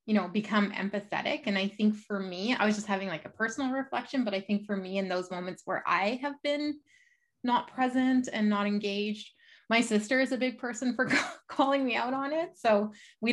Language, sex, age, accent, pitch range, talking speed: English, female, 20-39, American, 200-265 Hz, 215 wpm